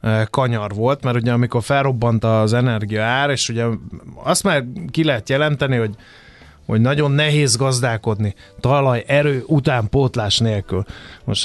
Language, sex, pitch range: Hungarian, male, 115-140 Hz